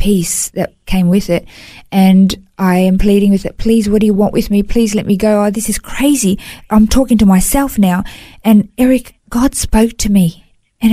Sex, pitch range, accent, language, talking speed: female, 200-245 Hz, Australian, English, 210 wpm